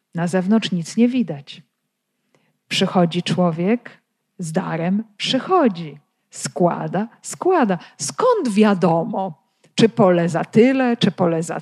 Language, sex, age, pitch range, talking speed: Polish, female, 40-59, 180-235 Hz, 110 wpm